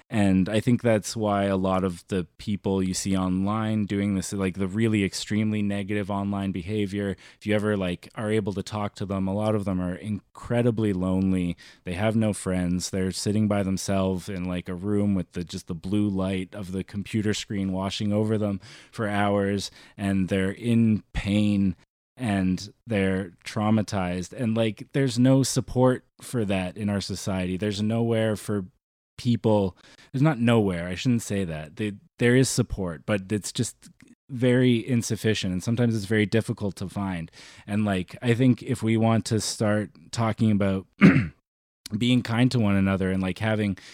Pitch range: 95-110 Hz